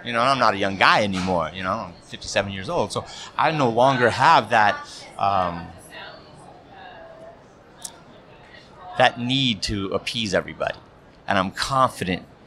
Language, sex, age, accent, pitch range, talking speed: English, male, 30-49, American, 100-135 Hz, 145 wpm